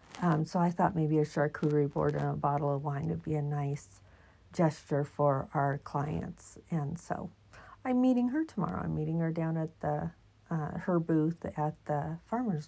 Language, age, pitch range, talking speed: English, 50-69, 140-170 Hz, 185 wpm